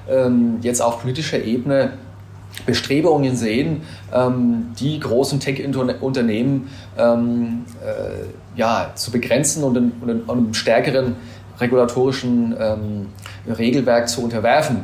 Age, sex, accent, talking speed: 30-49, male, German, 85 wpm